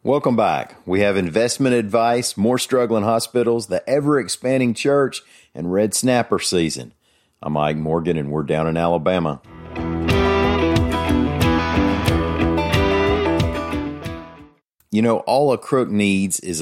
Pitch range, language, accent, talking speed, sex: 80-100 Hz, English, American, 110 wpm, male